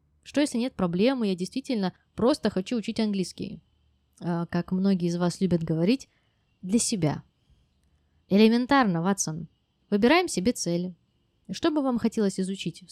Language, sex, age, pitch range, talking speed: Russian, female, 20-39, 175-225 Hz, 130 wpm